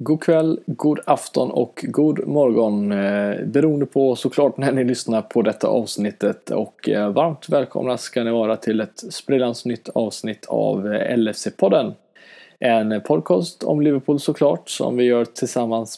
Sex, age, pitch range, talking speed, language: male, 20-39, 110-135 Hz, 145 wpm, Swedish